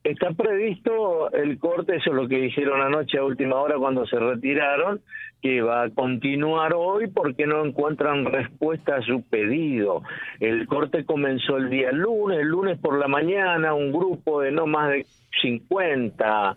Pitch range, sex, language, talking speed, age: 130-160 Hz, male, Spanish, 165 wpm, 50-69